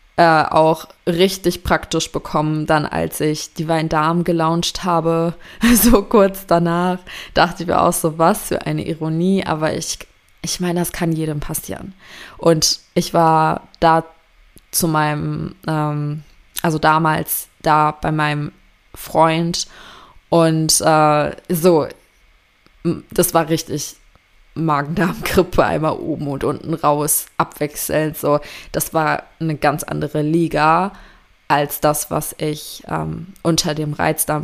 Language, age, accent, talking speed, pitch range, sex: German, 20-39, German, 130 wpm, 150-170 Hz, female